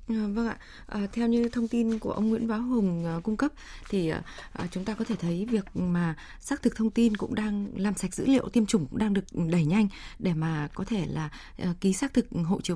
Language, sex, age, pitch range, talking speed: Vietnamese, female, 20-39, 185-235 Hz, 220 wpm